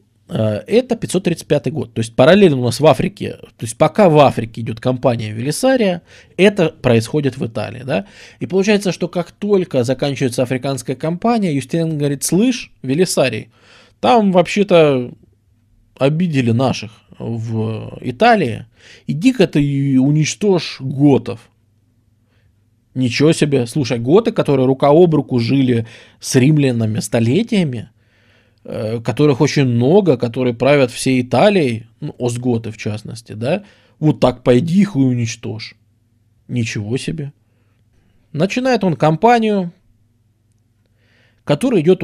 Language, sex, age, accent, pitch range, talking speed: Russian, male, 20-39, native, 115-155 Hz, 120 wpm